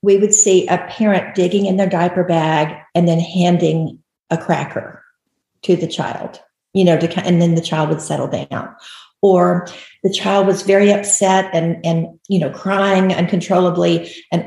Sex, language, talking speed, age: female, English, 170 wpm, 50-69